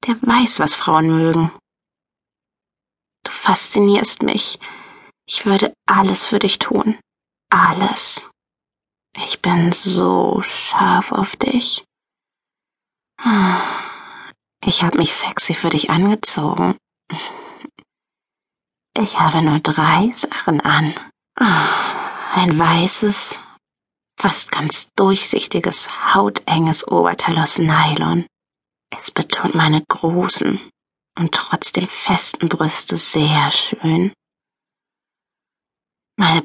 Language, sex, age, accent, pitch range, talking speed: German, female, 30-49, German, 160-200 Hz, 90 wpm